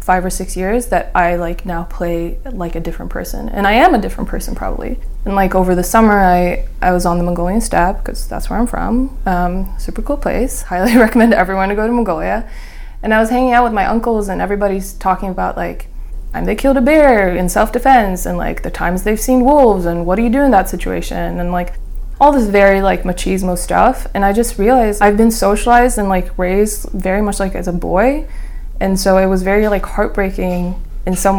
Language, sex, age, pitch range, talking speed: English, female, 20-39, 180-215 Hz, 225 wpm